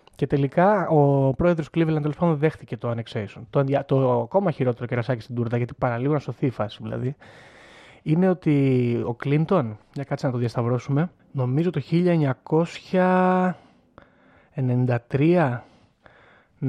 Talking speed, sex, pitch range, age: 120 wpm, male, 125-165 Hz, 30-49